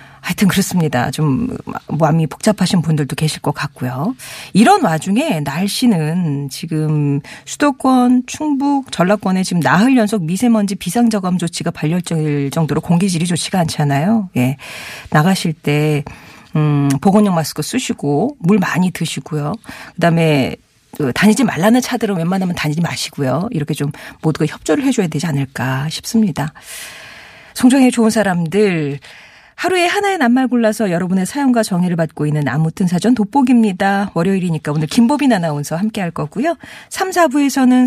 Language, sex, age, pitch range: Korean, female, 40-59, 150-225 Hz